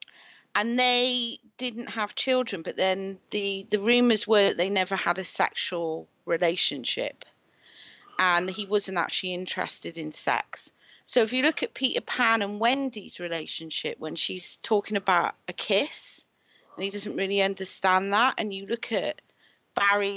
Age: 40-59